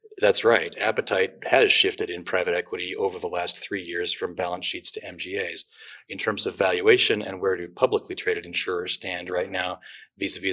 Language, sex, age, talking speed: English, male, 30-49, 180 wpm